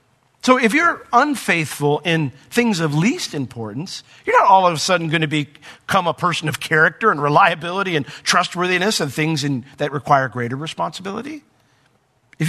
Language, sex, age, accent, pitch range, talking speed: English, male, 50-69, American, 125-165 Hz, 160 wpm